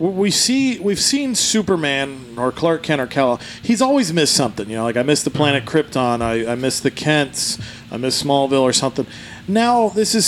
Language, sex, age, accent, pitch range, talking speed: English, male, 40-59, American, 120-150 Hz, 205 wpm